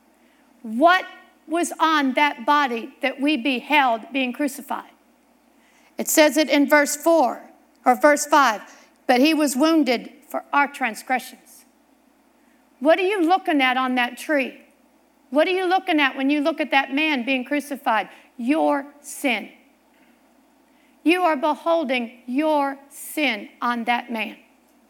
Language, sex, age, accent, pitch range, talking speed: English, female, 50-69, American, 280-340 Hz, 135 wpm